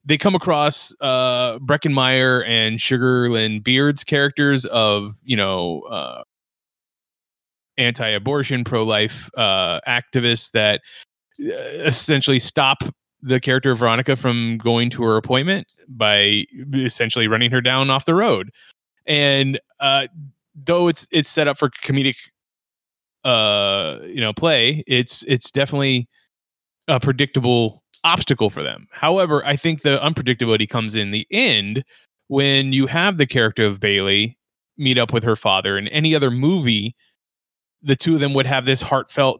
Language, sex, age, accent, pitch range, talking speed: English, male, 20-39, American, 115-140 Hz, 140 wpm